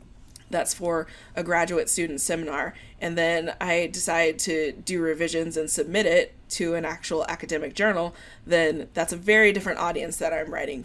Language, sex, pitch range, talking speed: English, female, 160-200 Hz, 165 wpm